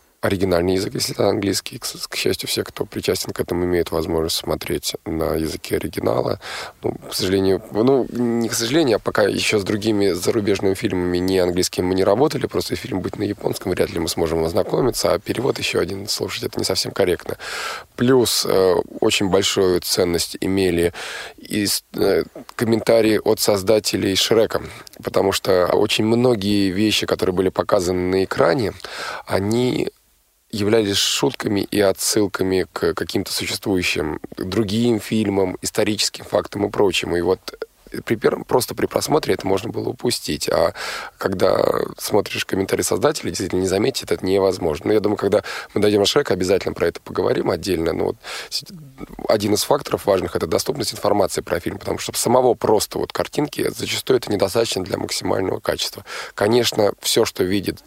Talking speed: 160 wpm